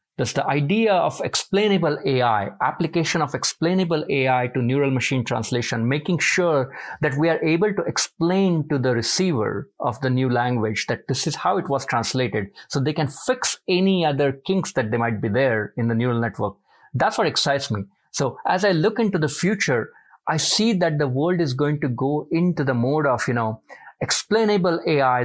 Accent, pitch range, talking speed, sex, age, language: Indian, 125-165 Hz, 190 wpm, male, 50-69, English